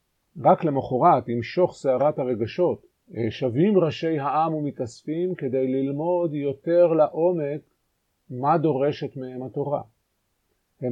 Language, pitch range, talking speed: Hebrew, 125-160 Hz, 105 wpm